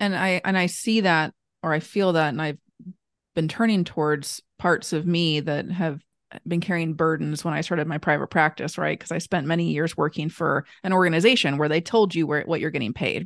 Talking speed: 215 wpm